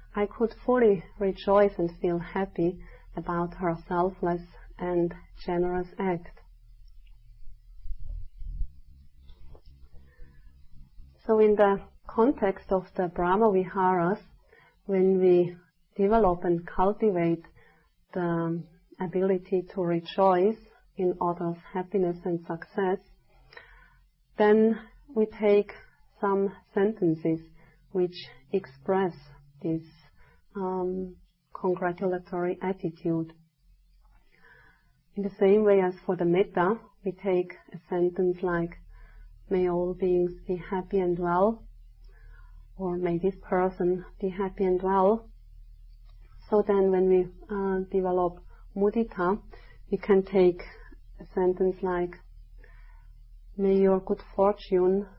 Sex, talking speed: female, 100 wpm